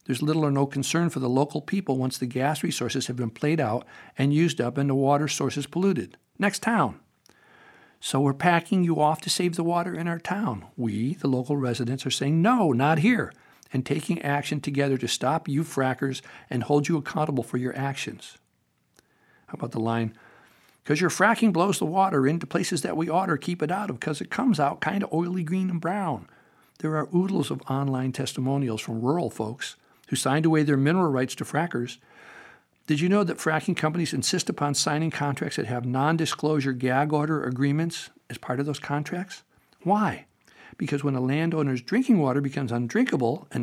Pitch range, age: 130-170 Hz, 60-79